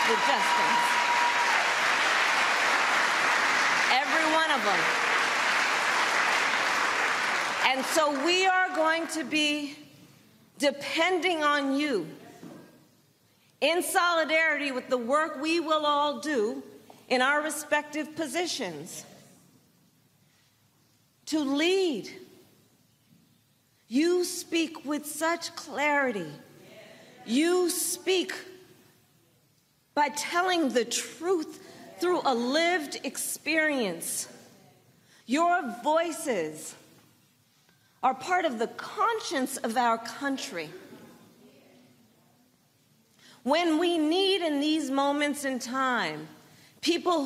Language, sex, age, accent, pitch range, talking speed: English, female, 40-59, American, 260-335 Hz, 85 wpm